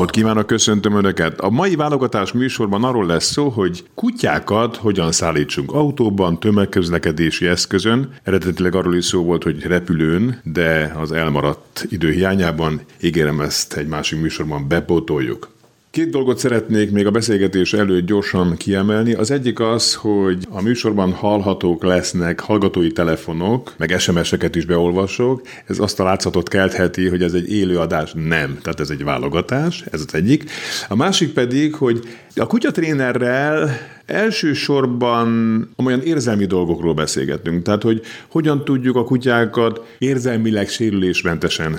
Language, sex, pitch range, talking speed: Hungarian, male, 85-120 Hz, 135 wpm